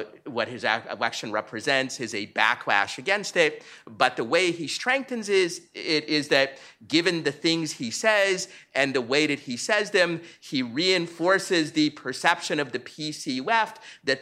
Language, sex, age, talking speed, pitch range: English, male, 30-49, 165 wpm, 115-150 Hz